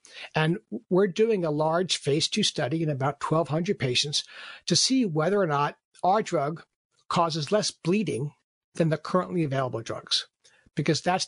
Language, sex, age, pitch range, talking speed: English, male, 60-79, 145-180 Hz, 155 wpm